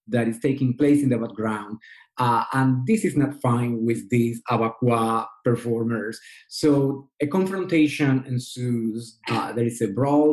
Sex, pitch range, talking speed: male, 115-145 Hz, 150 wpm